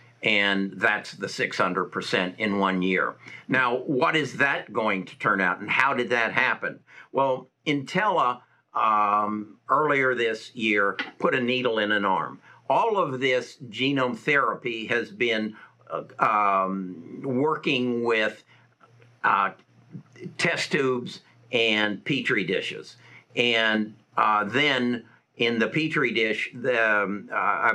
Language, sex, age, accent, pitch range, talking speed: English, male, 60-79, American, 105-130 Hz, 130 wpm